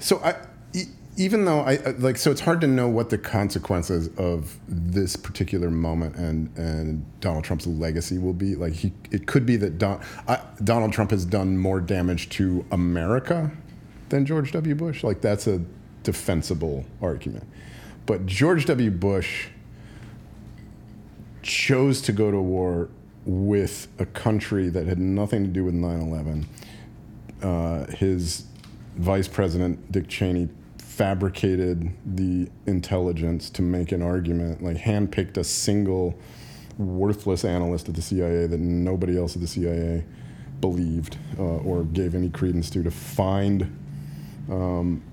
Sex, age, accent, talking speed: male, 40-59, American, 145 wpm